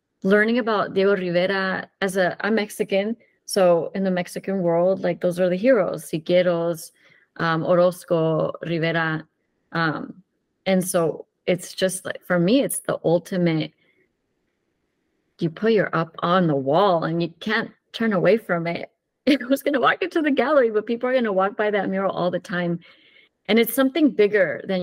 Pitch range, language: 175-215 Hz, English